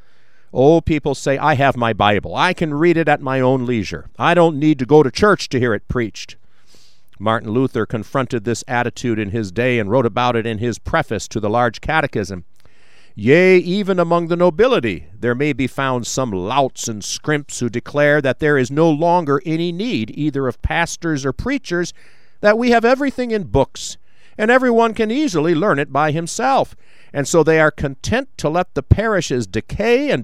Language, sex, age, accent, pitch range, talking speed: English, male, 50-69, American, 115-175 Hz, 190 wpm